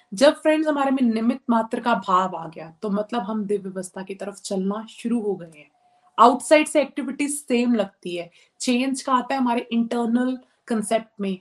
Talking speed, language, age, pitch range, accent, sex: 185 wpm, Hindi, 20-39, 200-245 Hz, native, female